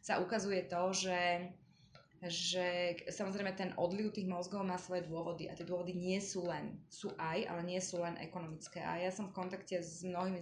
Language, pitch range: Slovak, 175-195 Hz